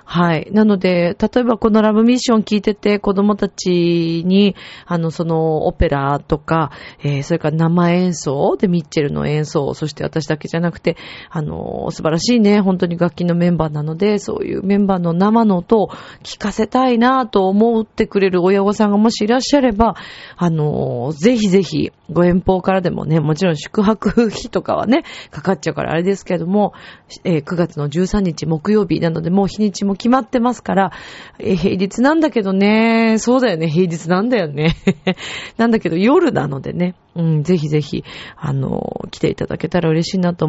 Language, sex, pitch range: Japanese, female, 165-215 Hz